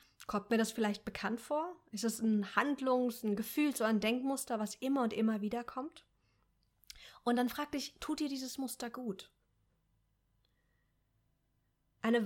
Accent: German